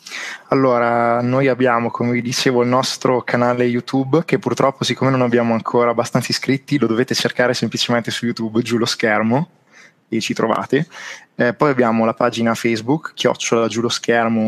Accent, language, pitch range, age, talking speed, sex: native, Italian, 110-125 Hz, 20-39, 165 wpm, male